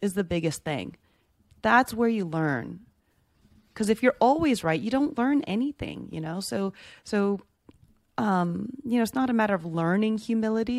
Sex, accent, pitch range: female, American, 150-235 Hz